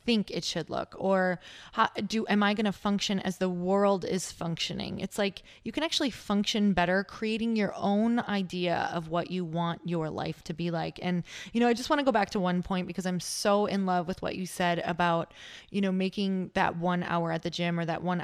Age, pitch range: 20-39, 175-220 Hz